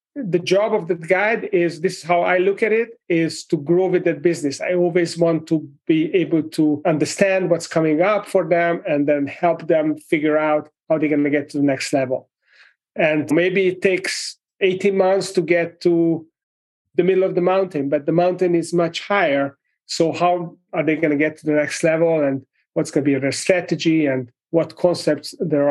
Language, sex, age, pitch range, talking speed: English, male, 30-49, 150-190 Hz, 210 wpm